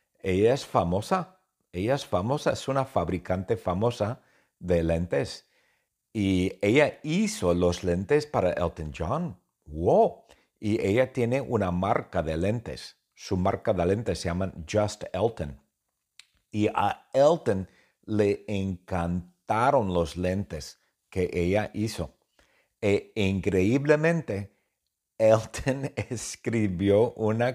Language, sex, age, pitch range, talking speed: English, male, 50-69, 95-145 Hz, 110 wpm